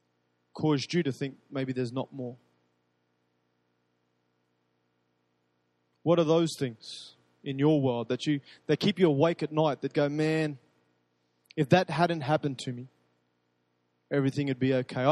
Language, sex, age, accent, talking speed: English, male, 20-39, Australian, 145 wpm